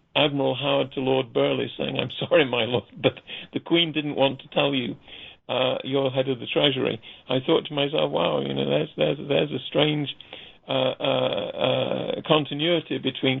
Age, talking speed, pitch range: 50-69, 175 wpm, 130-150 Hz